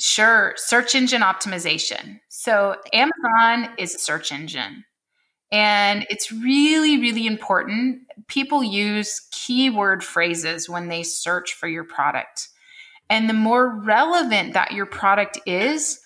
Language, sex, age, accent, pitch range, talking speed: English, female, 30-49, American, 195-265 Hz, 125 wpm